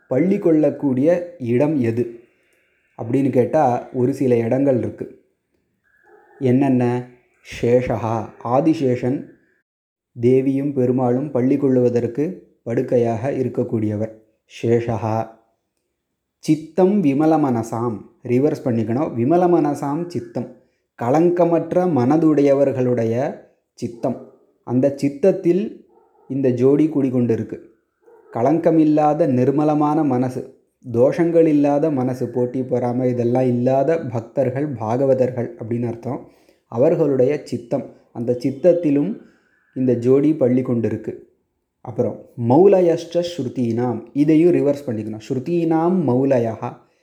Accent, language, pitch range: native, Tamil, 120-155 Hz